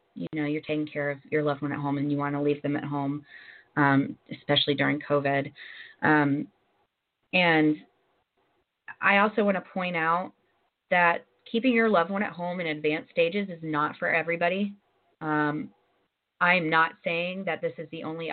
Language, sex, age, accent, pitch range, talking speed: English, female, 30-49, American, 150-170 Hz, 175 wpm